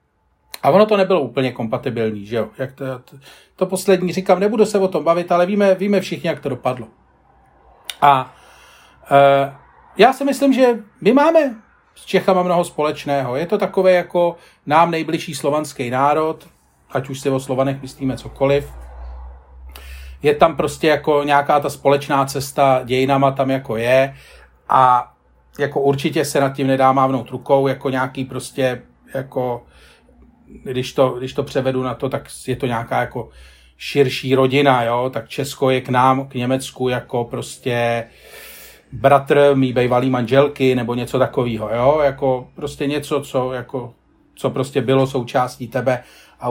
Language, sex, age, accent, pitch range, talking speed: Czech, male, 40-59, native, 125-150 Hz, 155 wpm